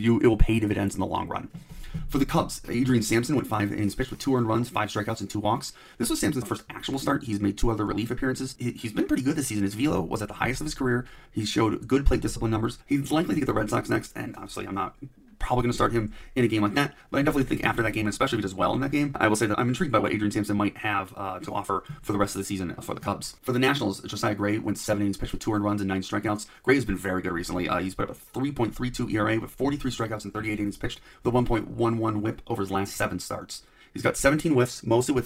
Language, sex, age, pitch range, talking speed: English, male, 30-49, 105-125 Hz, 295 wpm